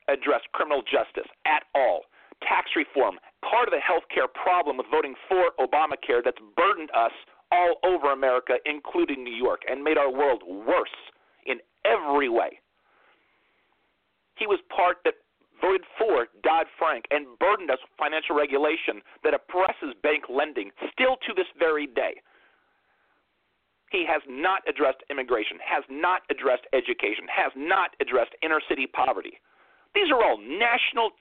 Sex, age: male, 40-59